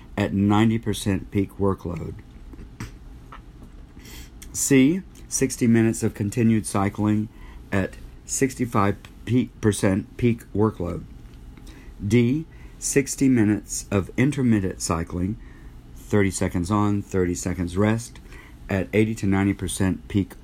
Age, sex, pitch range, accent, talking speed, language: 50-69, male, 85-110 Hz, American, 95 wpm, English